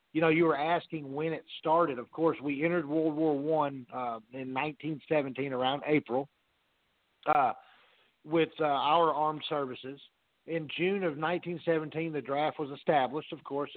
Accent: American